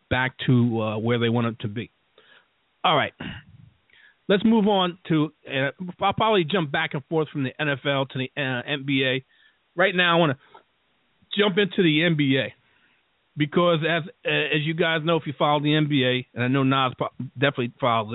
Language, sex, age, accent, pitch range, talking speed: English, male, 40-59, American, 135-170 Hz, 185 wpm